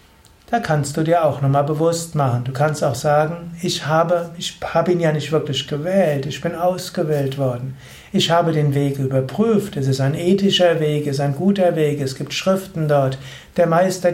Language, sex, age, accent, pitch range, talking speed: German, male, 60-79, German, 140-180 Hz, 195 wpm